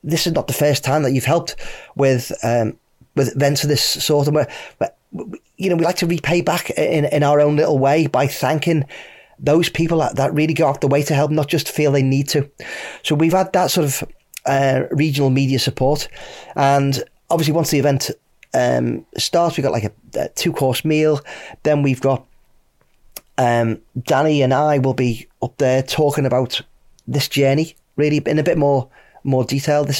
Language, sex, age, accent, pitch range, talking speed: English, male, 30-49, British, 130-155 Hz, 185 wpm